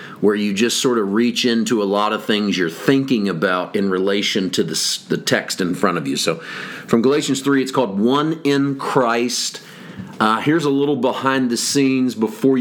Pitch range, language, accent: 105-125 Hz, English, American